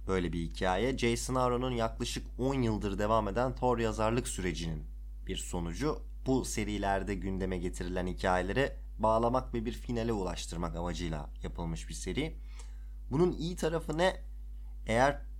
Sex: male